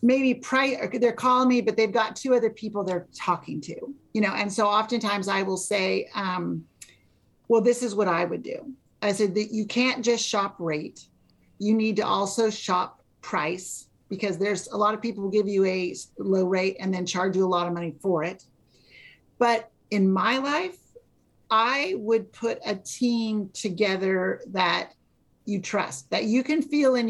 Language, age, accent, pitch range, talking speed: English, 40-59, American, 180-225 Hz, 185 wpm